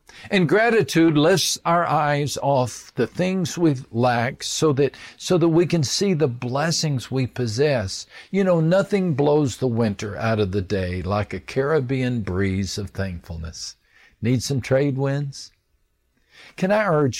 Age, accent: 50-69, American